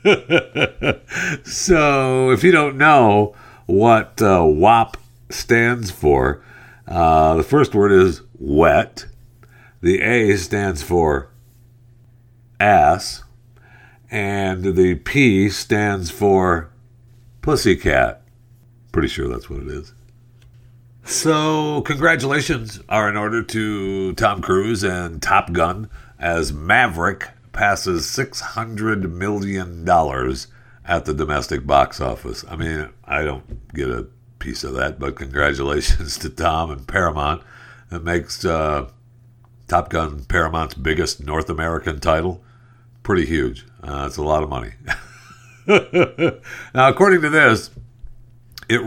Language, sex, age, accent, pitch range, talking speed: English, male, 50-69, American, 85-120 Hz, 115 wpm